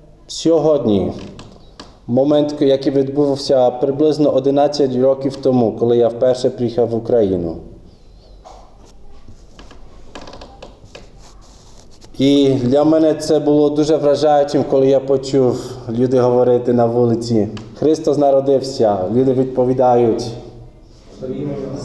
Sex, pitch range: male, 110-150 Hz